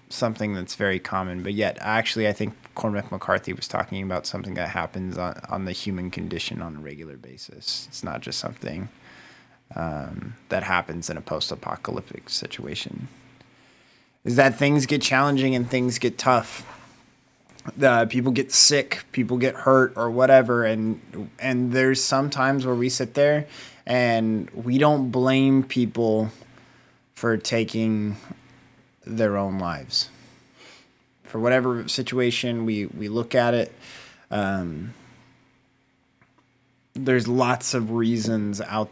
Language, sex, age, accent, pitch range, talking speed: English, male, 20-39, American, 105-130 Hz, 135 wpm